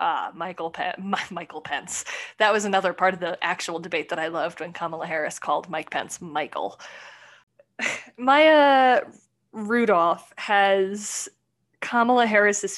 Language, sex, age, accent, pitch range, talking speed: English, female, 20-39, American, 185-245 Hz, 135 wpm